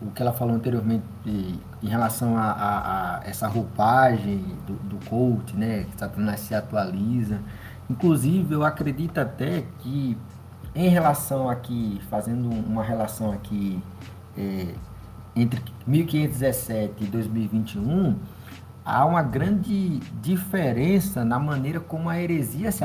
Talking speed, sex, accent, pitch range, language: 120 wpm, male, Brazilian, 110-160 Hz, Portuguese